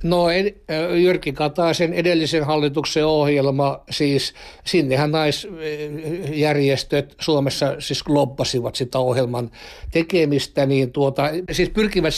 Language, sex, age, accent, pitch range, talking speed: Finnish, male, 60-79, native, 135-165 Hz, 100 wpm